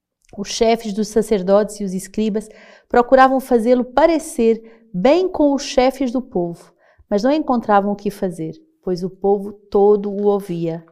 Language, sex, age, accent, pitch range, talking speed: Portuguese, female, 40-59, Brazilian, 185-225 Hz, 155 wpm